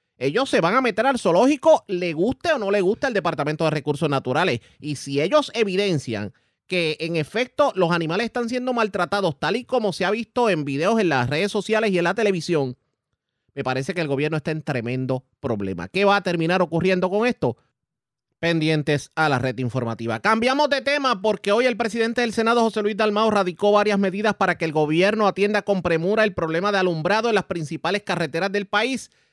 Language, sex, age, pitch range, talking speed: Spanish, male, 30-49, 155-220 Hz, 205 wpm